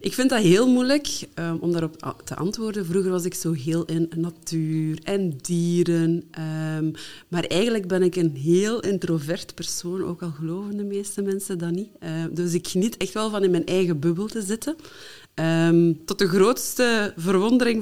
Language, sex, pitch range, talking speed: Dutch, female, 160-200 Hz, 170 wpm